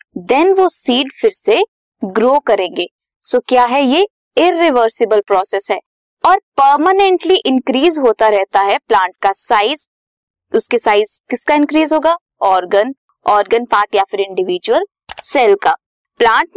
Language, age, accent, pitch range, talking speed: Hindi, 20-39, native, 215-310 Hz, 140 wpm